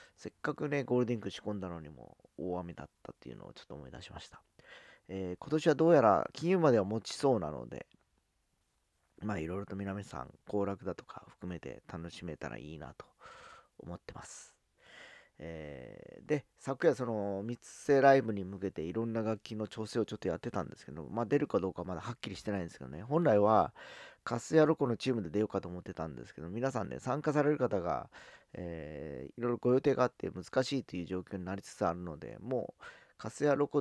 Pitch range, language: 90-120 Hz, Japanese